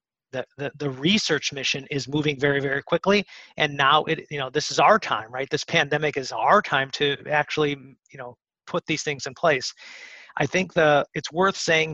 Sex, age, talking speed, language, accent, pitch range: male, 40-59, 200 wpm, English, American, 145-170 Hz